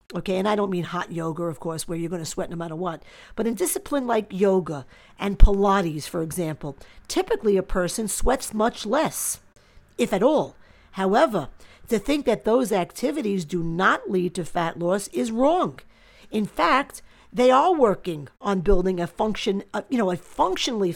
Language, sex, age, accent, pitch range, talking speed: English, female, 50-69, American, 175-235 Hz, 180 wpm